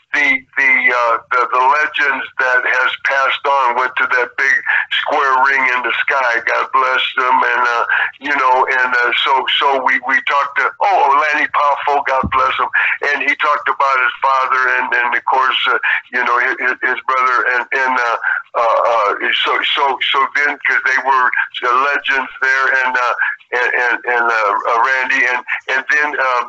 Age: 50-69